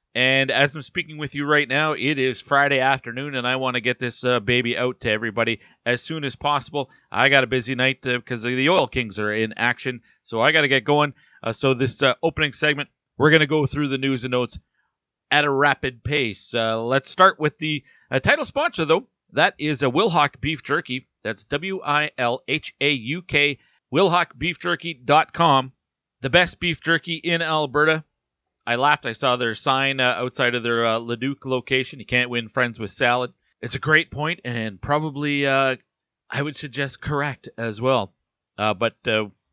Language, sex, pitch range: English, male, 120-150 Hz